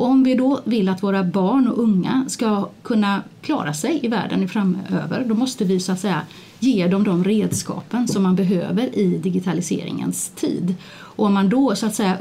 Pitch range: 185-235 Hz